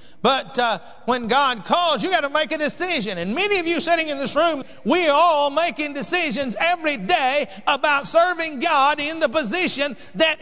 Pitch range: 280-330 Hz